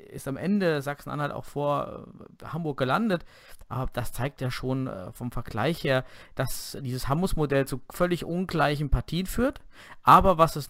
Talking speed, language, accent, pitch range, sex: 150 wpm, German, German, 130-165 Hz, male